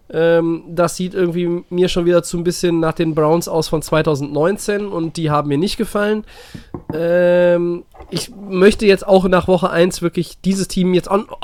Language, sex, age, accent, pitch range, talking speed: German, male, 20-39, German, 145-175 Hz, 185 wpm